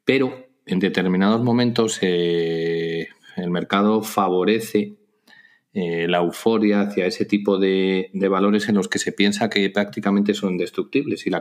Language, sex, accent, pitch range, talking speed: Spanish, male, Spanish, 90-105 Hz, 145 wpm